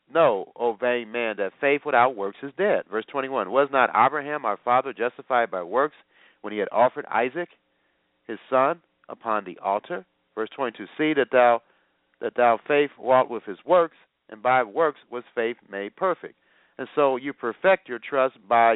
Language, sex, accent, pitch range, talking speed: English, male, American, 110-140 Hz, 175 wpm